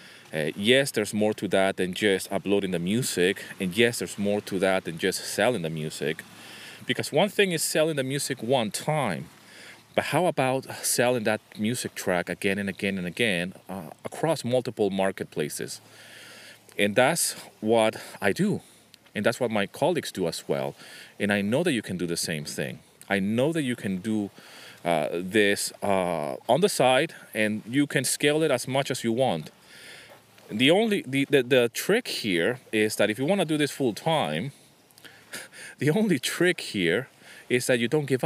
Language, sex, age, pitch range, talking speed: English, male, 30-49, 100-135 Hz, 185 wpm